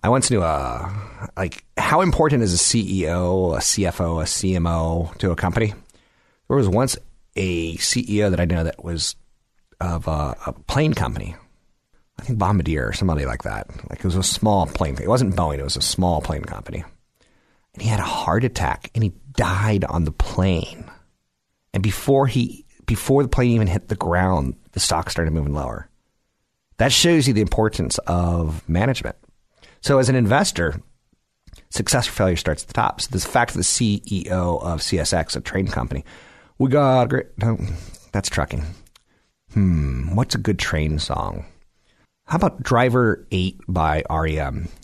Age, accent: 40-59, American